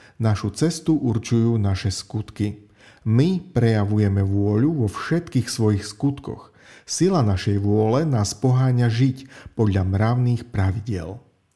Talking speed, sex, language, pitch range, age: 110 wpm, male, Slovak, 100-140 Hz, 40-59